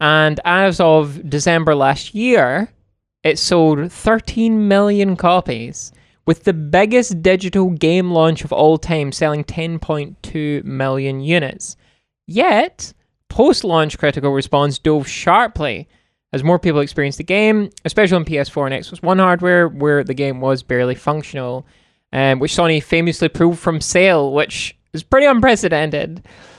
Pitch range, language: 140-180 Hz, English